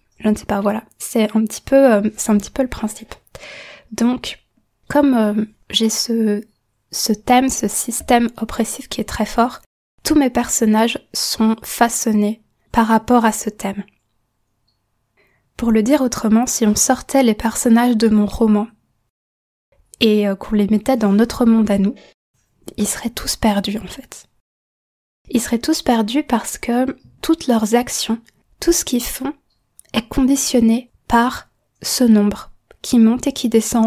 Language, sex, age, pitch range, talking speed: French, female, 20-39, 215-245 Hz, 160 wpm